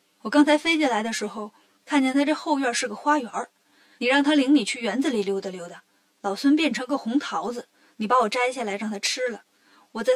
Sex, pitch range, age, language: female, 215-295 Hz, 20-39, Chinese